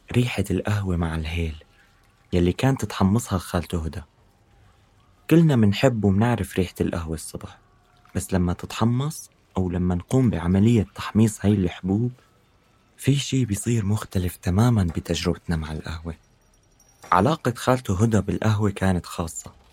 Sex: male